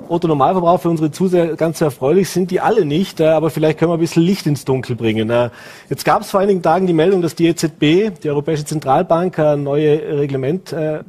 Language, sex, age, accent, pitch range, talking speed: German, male, 30-49, German, 125-160 Hz, 205 wpm